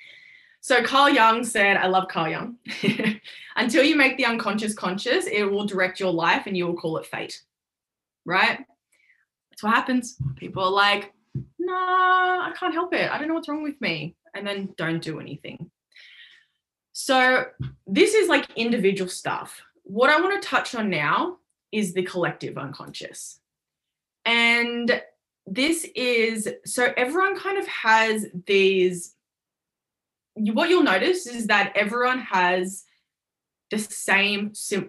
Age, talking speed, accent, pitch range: 20-39, 145 wpm, Australian, 185-260 Hz